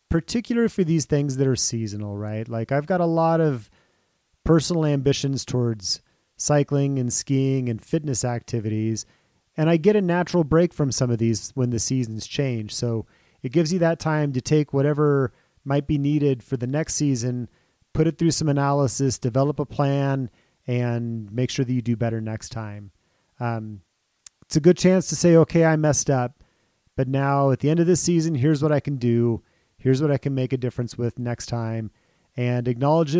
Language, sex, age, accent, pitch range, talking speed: English, male, 30-49, American, 120-155 Hz, 190 wpm